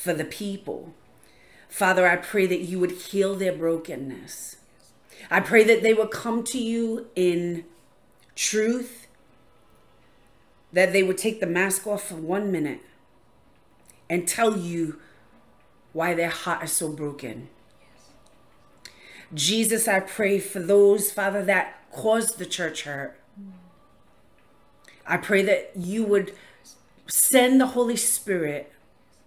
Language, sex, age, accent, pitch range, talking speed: English, female, 40-59, American, 160-200 Hz, 125 wpm